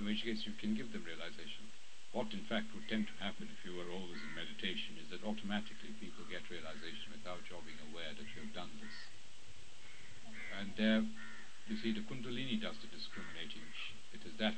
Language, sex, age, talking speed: English, male, 60-79, 200 wpm